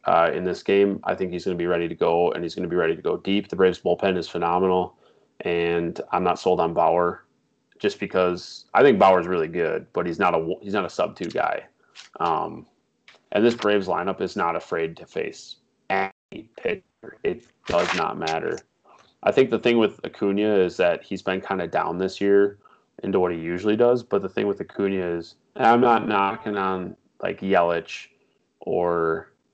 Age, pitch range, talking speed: 30-49, 90-105 Hz, 200 wpm